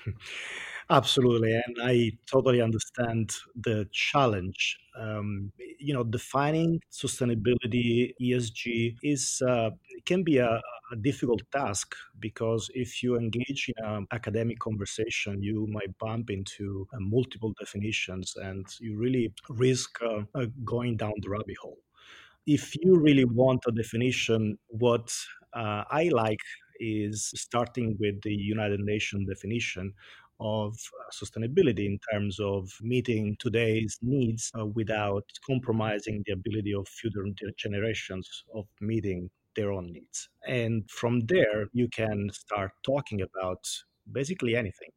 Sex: male